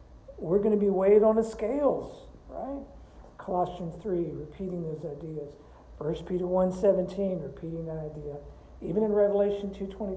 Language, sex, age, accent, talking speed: English, male, 60-79, American, 155 wpm